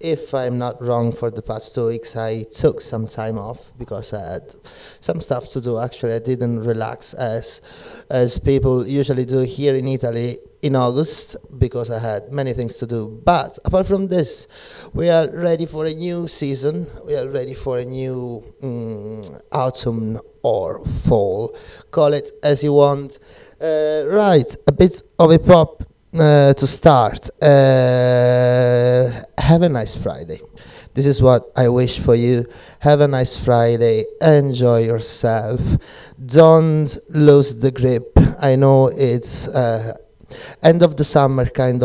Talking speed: 155 wpm